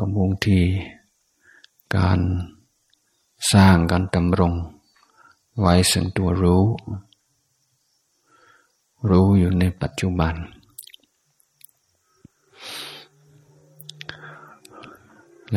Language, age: Thai, 60-79